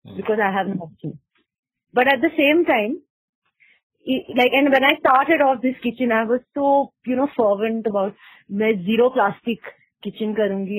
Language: English